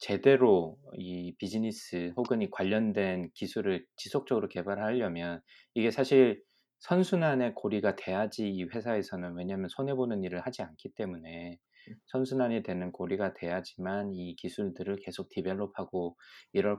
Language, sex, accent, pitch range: Korean, male, native, 90-120 Hz